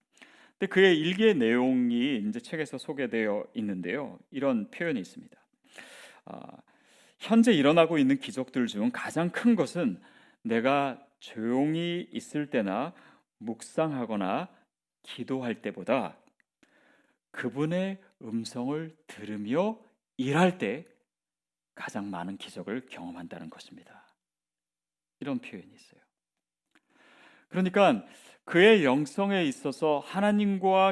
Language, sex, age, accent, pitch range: Korean, male, 40-59, native, 120-195 Hz